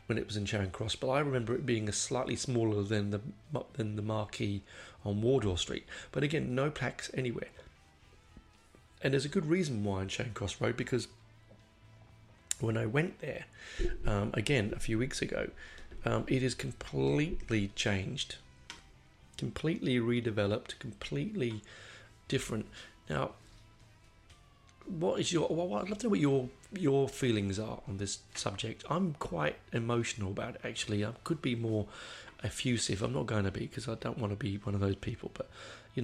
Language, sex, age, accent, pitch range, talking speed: English, male, 30-49, British, 105-125 Hz, 170 wpm